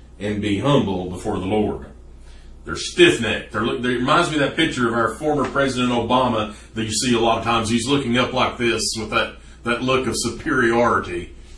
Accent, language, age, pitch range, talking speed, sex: American, English, 40-59, 105-175 Hz, 190 wpm, male